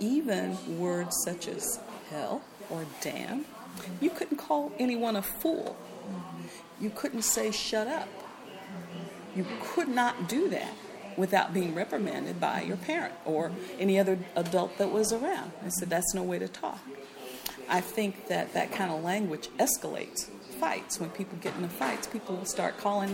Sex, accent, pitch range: female, American, 170-225 Hz